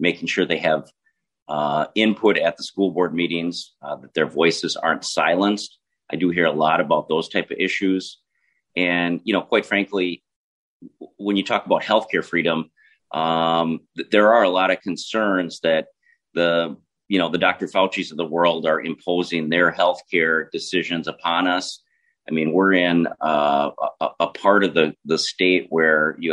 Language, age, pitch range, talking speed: English, 40-59, 80-90 Hz, 175 wpm